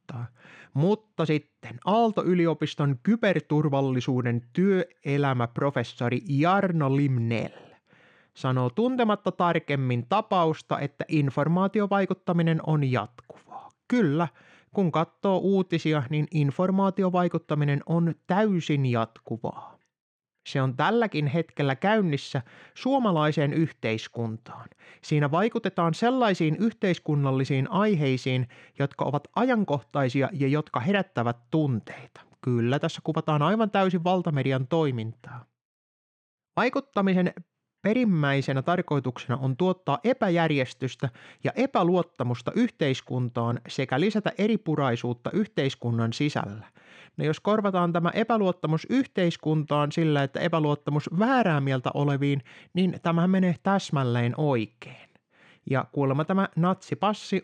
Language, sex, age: Finnish, male, 30-49